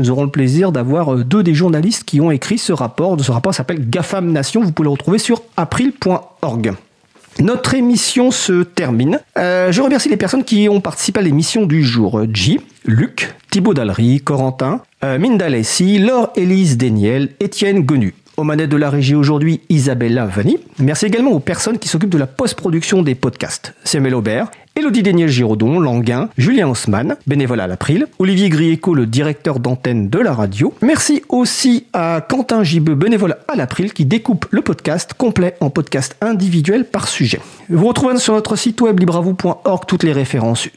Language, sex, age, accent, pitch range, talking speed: French, male, 40-59, French, 130-205 Hz, 175 wpm